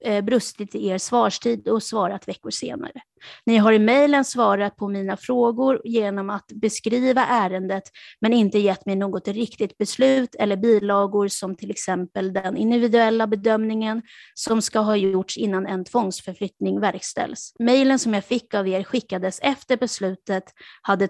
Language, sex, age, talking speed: Swedish, female, 30-49, 150 wpm